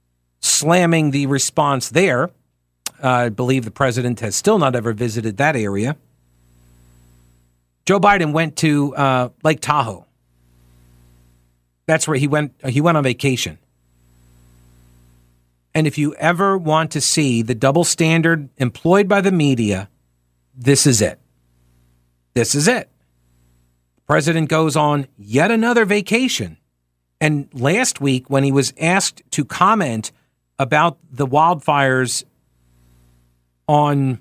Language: English